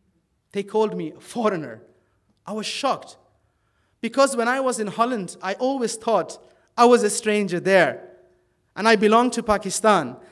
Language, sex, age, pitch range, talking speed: English, male, 30-49, 180-235 Hz, 155 wpm